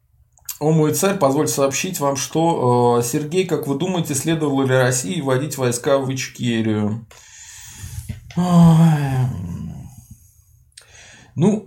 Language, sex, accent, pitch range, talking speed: Russian, male, native, 115-150 Hz, 105 wpm